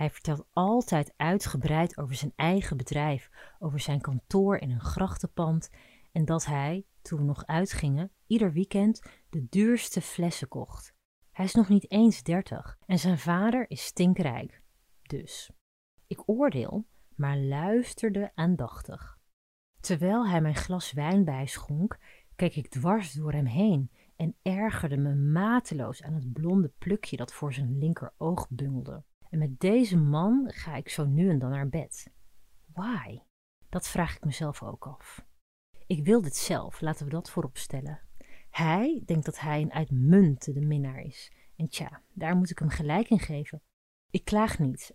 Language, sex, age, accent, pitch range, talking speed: Dutch, female, 30-49, Dutch, 145-195 Hz, 155 wpm